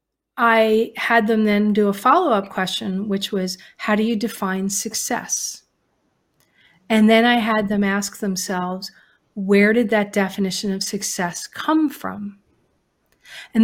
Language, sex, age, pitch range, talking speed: English, female, 40-59, 200-240 Hz, 135 wpm